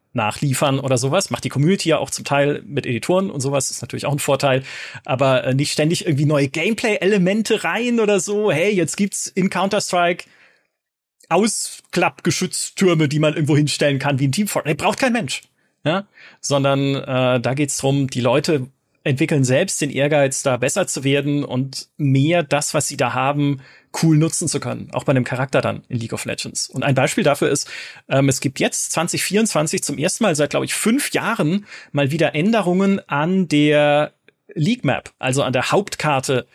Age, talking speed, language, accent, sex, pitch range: 30-49, 185 wpm, German, German, male, 140-190 Hz